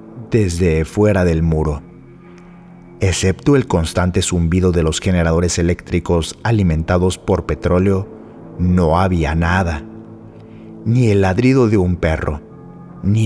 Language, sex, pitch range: Spanish, male, 85-105 Hz